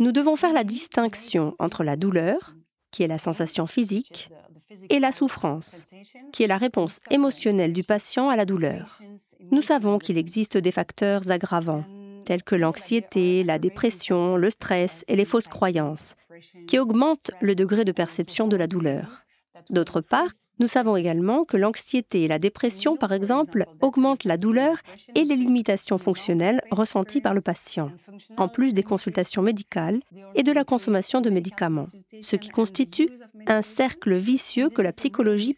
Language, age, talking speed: English, 40-59, 160 wpm